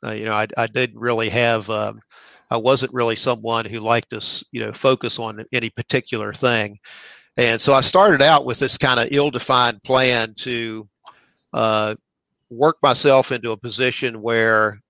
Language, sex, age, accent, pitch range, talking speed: English, male, 50-69, American, 110-125 Hz, 170 wpm